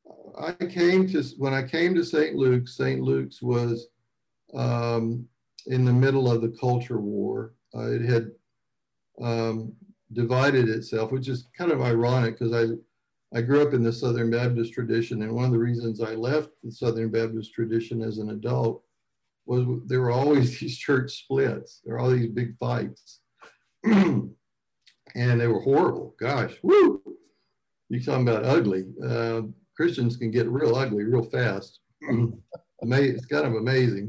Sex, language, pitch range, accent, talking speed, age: male, English, 115-140 Hz, American, 160 wpm, 60-79